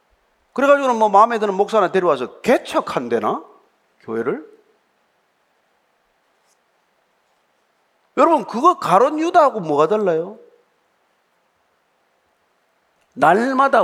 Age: 40-59